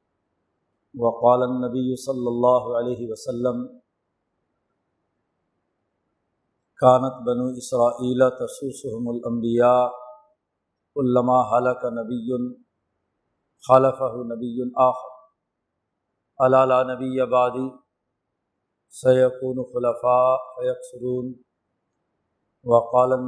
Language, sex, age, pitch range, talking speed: Urdu, male, 50-69, 120-130 Hz, 60 wpm